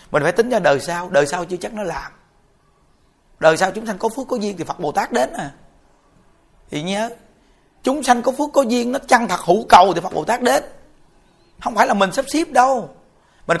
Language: Vietnamese